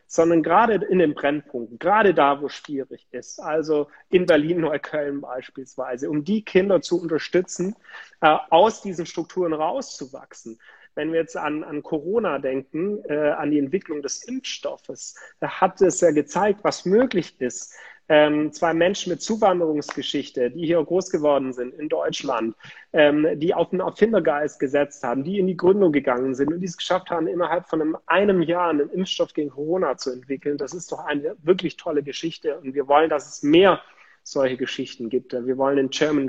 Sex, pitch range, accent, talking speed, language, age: male, 135-170 Hz, German, 170 wpm, German, 40-59